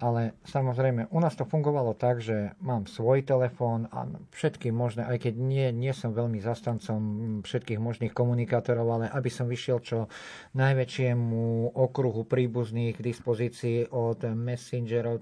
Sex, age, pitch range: male, 50-69, 115-130 Hz